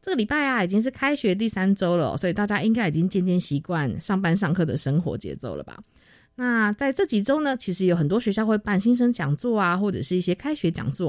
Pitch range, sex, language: 155-210 Hz, female, Chinese